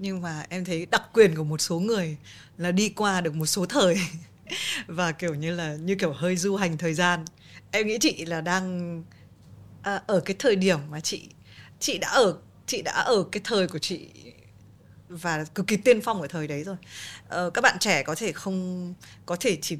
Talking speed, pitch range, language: 205 wpm, 170-240 Hz, Vietnamese